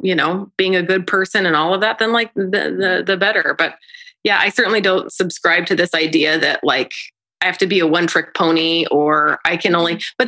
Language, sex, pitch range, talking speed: English, female, 185-245 Hz, 235 wpm